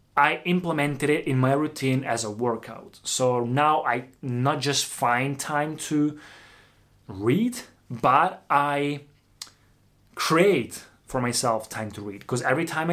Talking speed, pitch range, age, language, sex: 135 wpm, 115-150 Hz, 20-39, Italian, male